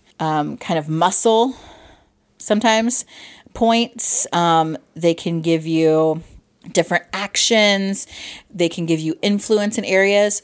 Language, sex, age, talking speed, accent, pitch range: English, female, 30-49, 115 wpm, American, 170-210 Hz